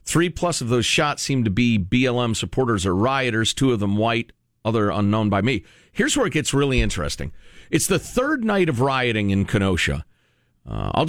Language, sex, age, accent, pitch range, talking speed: English, male, 50-69, American, 100-140 Hz, 190 wpm